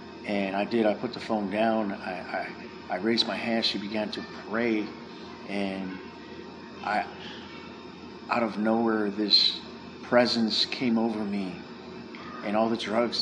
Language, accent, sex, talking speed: English, American, male, 145 wpm